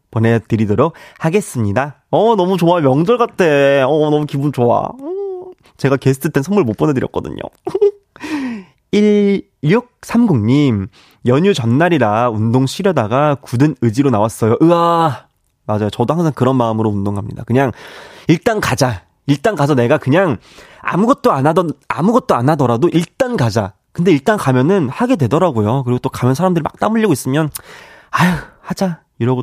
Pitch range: 125-195 Hz